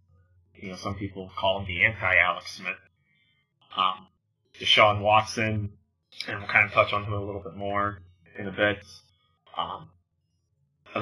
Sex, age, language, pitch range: male, 20-39, English, 100-110 Hz